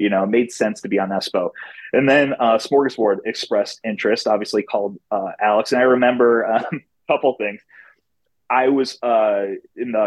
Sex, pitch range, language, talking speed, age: male, 105-130 Hz, English, 185 wpm, 30-49